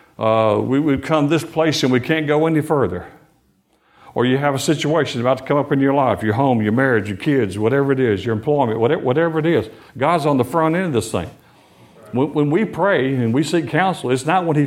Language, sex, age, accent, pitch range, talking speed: English, male, 50-69, American, 125-160 Hz, 240 wpm